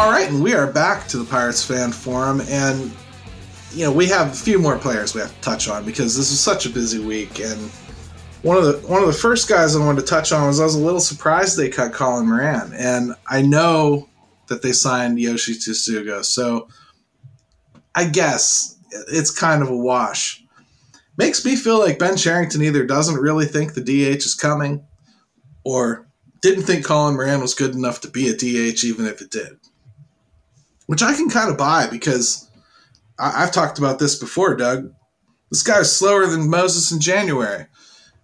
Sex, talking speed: male, 195 wpm